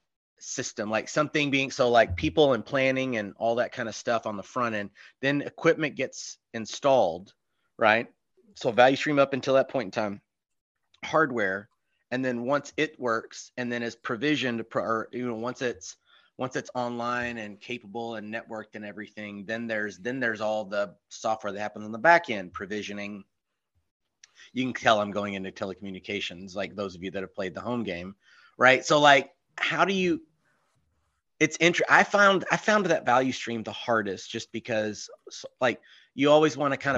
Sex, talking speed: male, 185 wpm